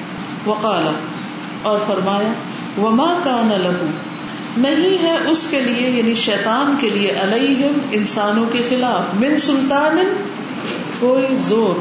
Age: 50-69